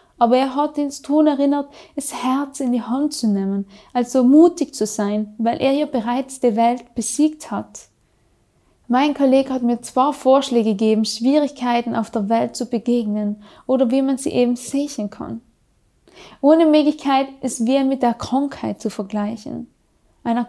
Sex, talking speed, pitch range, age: female, 165 wpm, 225-275 Hz, 10-29